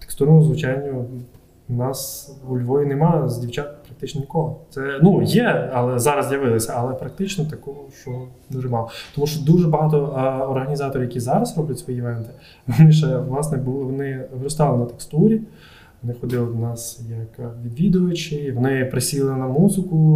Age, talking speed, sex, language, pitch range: 20-39, 150 wpm, male, Ukrainian, 125-150 Hz